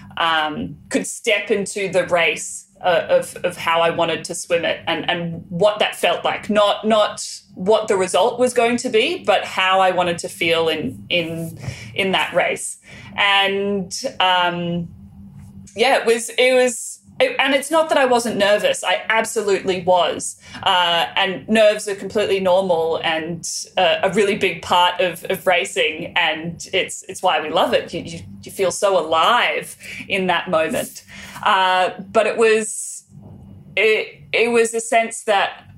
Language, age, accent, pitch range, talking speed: English, 30-49, Australian, 170-220 Hz, 165 wpm